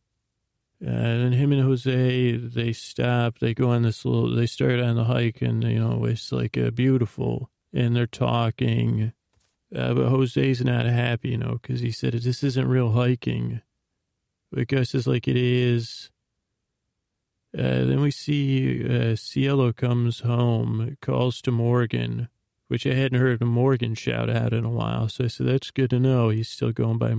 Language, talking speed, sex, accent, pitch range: English, 175 wpm, male, American, 115-125 Hz